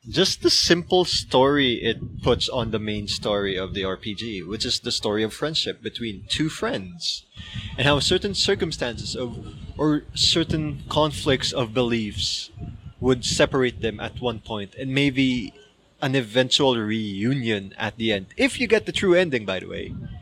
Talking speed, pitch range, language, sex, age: 165 wpm, 115-160 Hz, English, male, 20-39